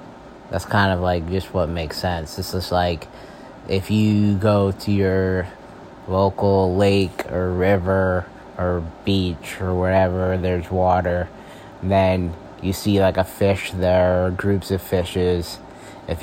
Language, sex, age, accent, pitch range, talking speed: English, male, 20-39, American, 90-95 Hz, 135 wpm